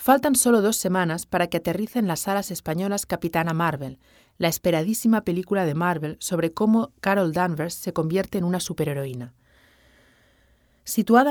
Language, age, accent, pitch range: Chinese, 30-49, Spanish, 165-210 Hz